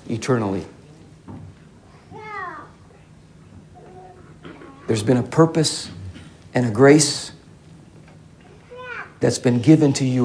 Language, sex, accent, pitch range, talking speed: English, male, American, 110-145 Hz, 75 wpm